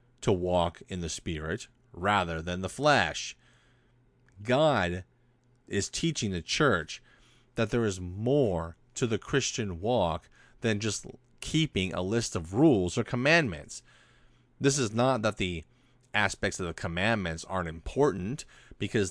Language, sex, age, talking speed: English, male, 30-49, 135 wpm